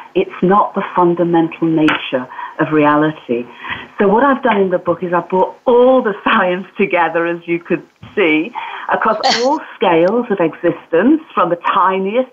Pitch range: 160-205 Hz